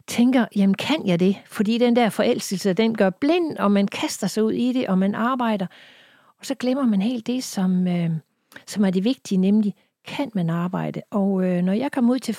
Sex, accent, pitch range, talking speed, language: female, native, 185-235 Hz, 210 wpm, Danish